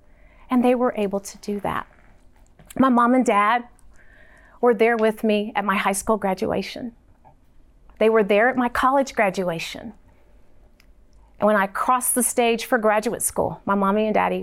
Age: 40-59